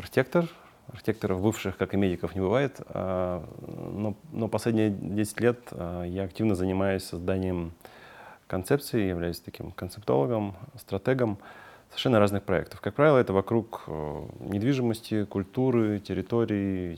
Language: Russian